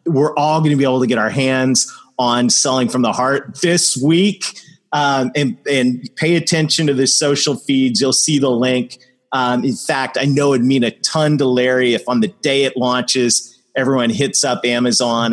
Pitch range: 120-145 Hz